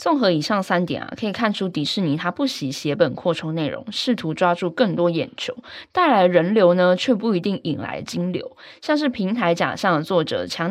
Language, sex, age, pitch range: Chinese, female, 10-29, 165-235 Hz